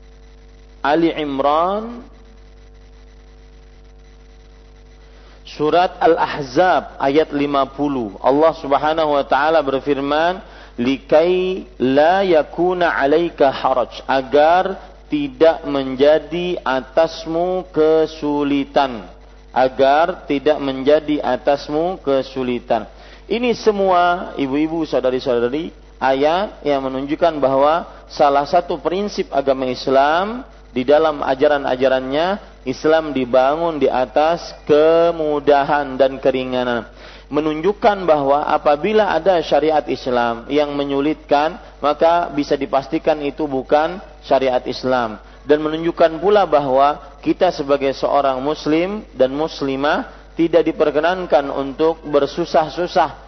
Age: 50-69